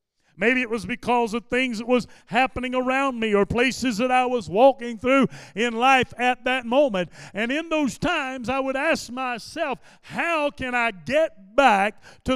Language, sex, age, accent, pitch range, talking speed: English, male, 50-69, American, 200-255 Hz, 180 wpm